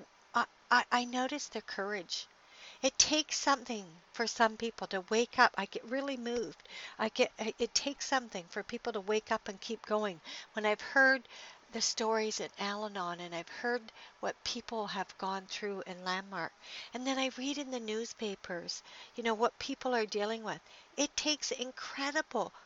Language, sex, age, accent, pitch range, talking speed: English, female, 60-79, American, 200-250 Hz, 170 wpm